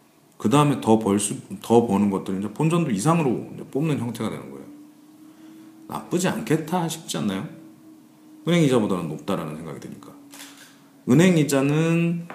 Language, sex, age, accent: Korean, male, 40-59, native